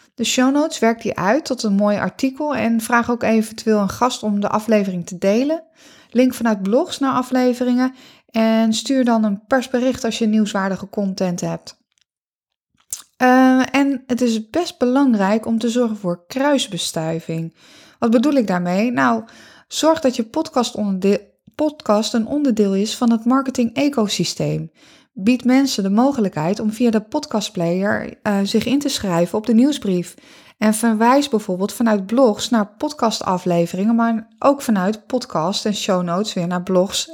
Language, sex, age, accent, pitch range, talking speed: Dutch, female, 20-39, Dutch, 200-255 Hz, 160 wpm